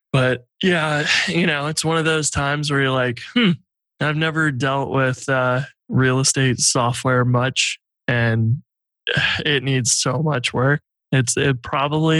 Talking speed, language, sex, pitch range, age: 150 wpm, English, male, 125-145 Hz, 20-39